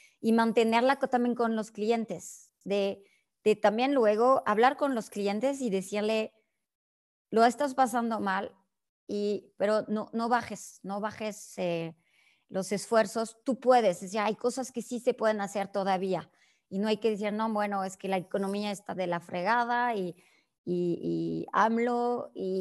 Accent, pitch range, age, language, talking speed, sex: Mexican, 195-235 Hz, 30-49, Spanish, 165 wpm, male